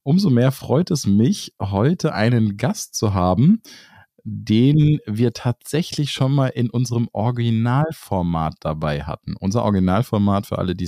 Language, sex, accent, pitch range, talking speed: German, male, German, 95-130 Hz, 140 wpm